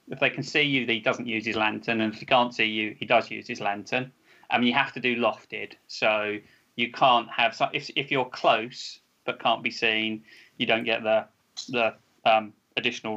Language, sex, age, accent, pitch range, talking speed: English, male, 20-39, British, 110-120 Hz, 220 wpm